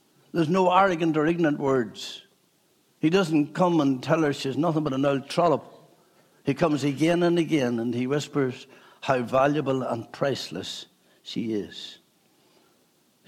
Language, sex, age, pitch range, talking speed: English, male, 60-79, 125-170 Hz, 150 wpm